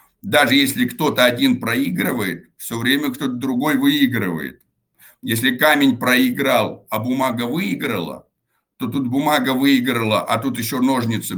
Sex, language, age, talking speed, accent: male, Russian, 60-79, 125 wpm, native